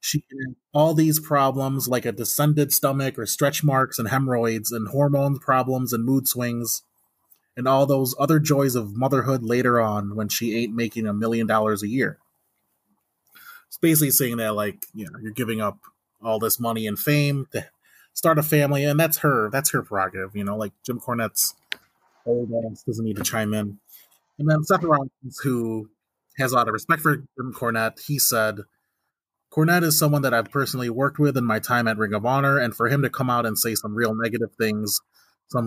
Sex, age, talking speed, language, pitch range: male, 20-39, 195 wpm, English, 110-140 Hz